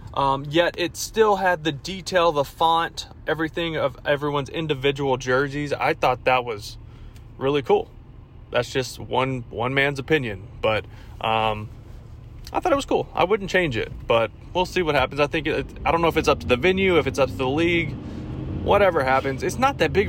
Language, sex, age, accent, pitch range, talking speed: English, male, 20-39, American, 105-145 Hz, 195 wpm